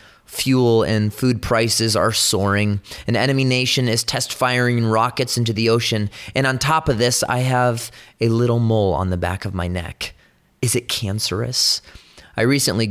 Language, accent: English, American